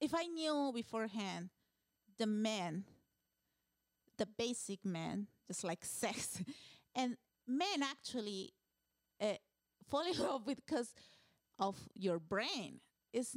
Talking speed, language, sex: 110 wpm, English, female